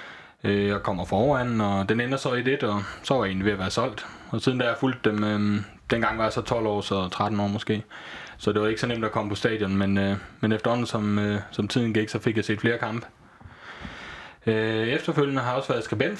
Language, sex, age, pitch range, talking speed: Danish, male, 20-39, 105-125 Hz, 250 wpm